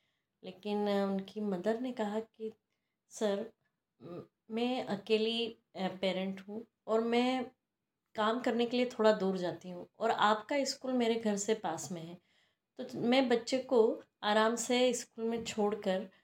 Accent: native